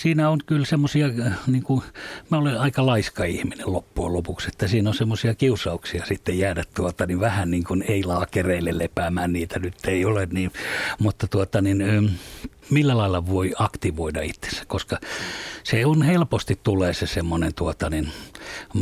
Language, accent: Finnish, native